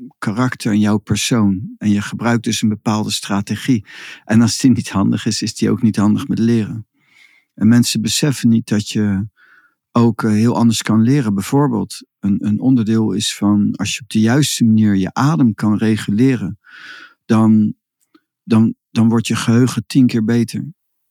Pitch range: 110-125 Hz